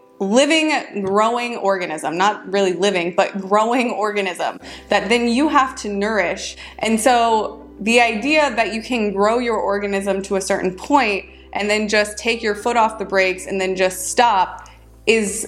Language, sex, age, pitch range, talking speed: English, female, 20-39, 195-240 Hz, 165 wpm